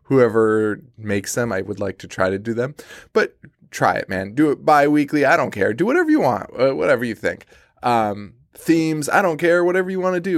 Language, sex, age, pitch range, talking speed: English, male, 20-39, 105-145 Hz, 220 wpm